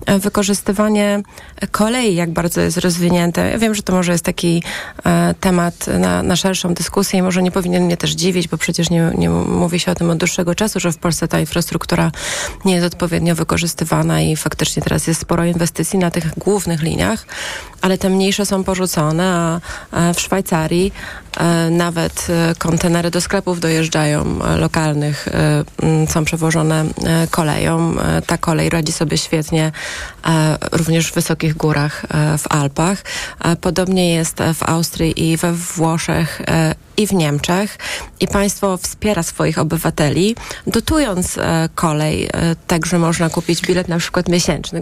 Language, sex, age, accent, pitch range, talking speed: Polish, female, 30-49, native, 165-185 Hz, 145 wpm